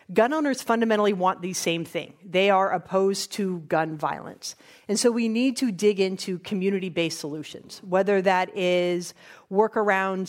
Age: 40-59